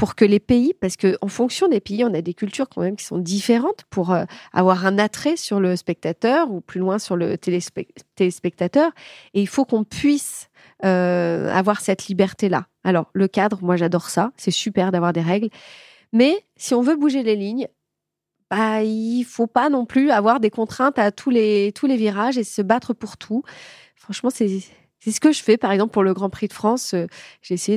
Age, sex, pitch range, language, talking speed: 30-49, female, 180-235 Hz, French, 205 wpm